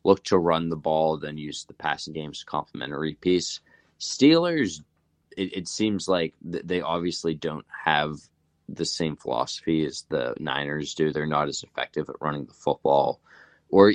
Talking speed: 165 wpm